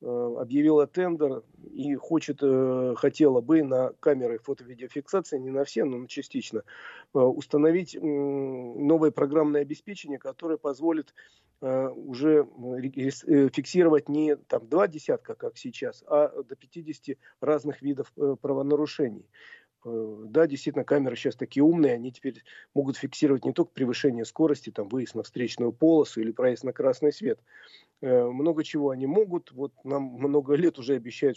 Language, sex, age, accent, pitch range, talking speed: Russian, male, 40-59, native, 130-155 Hz, 130 wpm